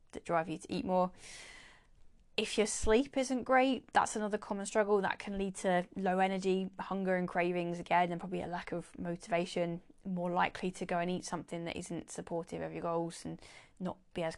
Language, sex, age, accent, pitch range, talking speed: English, female, 20-39, British, 175-210 Hz, 195 wpm